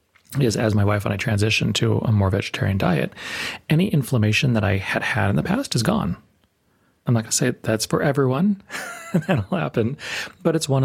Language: English